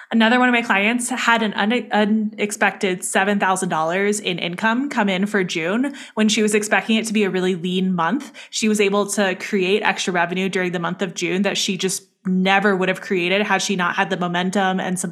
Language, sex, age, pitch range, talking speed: English, female, 20-39, 185-215 Hz, 210 wpm